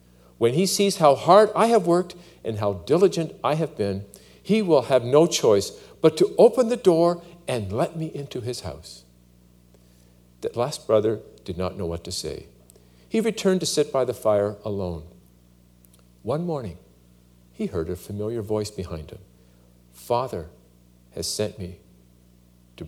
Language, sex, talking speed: English, male, 160 wpm